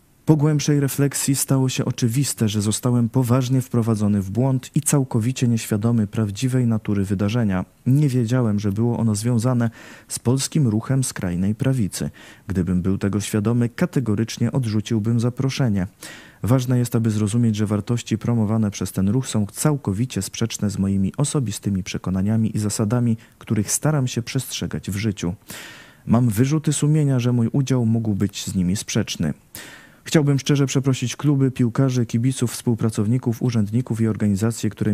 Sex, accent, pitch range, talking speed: male, native, 105-125 Hz, 145 wpm